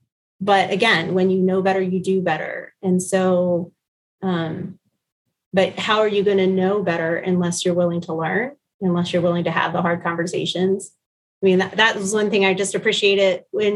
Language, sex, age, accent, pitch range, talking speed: English, female, 30-49, American, 180-205 Hz, 190 wpm